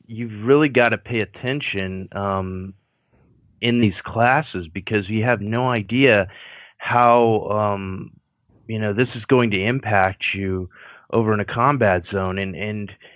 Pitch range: 100-125 Hz